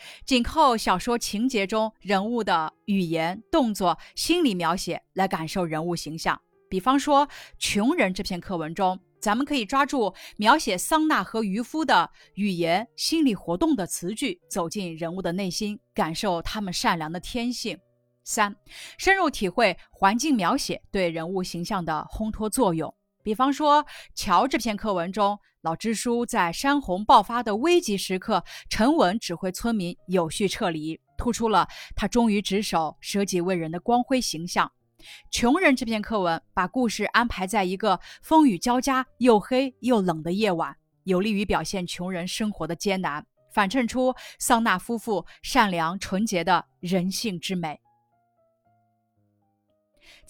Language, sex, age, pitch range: Chinese, female, 30-49, 175-240 Hz